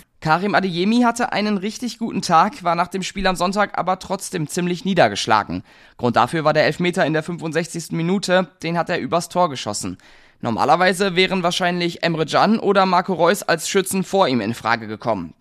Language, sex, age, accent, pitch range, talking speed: German, male, 20-39, German, 140-195 Hz, 185 wpm